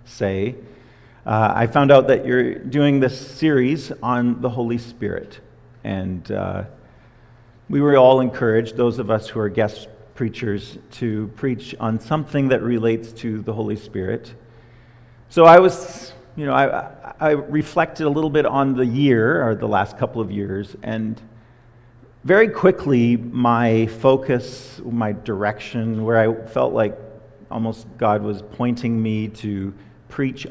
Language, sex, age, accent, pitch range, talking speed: English, male, 50-69, American, 110-130 Hz, 150 wpm